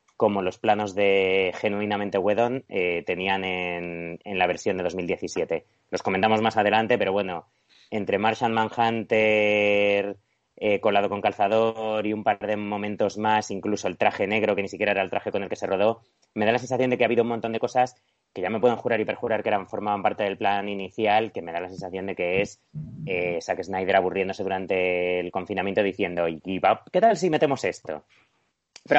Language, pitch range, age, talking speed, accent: Spanish, 90-115 Hz, 30-49, 205 wpm, Spanish